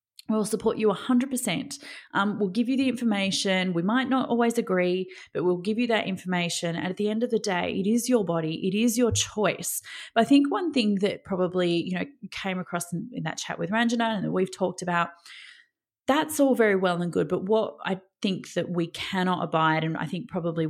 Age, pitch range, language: 30-49, 170-225 Hz, English